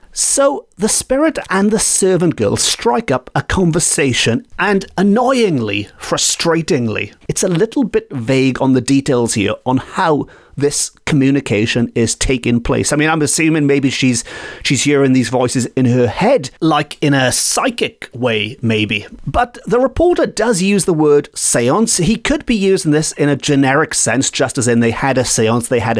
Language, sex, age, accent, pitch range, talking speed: English, male, 40-59, British, 125-195 Hz, 175 wpm